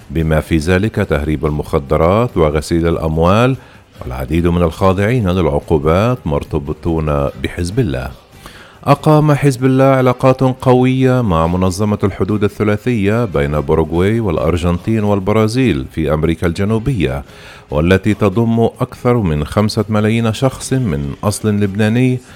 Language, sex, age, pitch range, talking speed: Arabic, male, 40-59, 85-115 Hz, 105 wpm